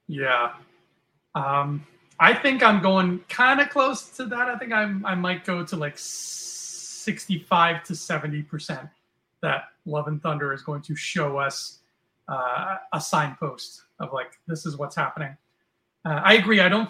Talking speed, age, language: 160 wpm, 30-49, English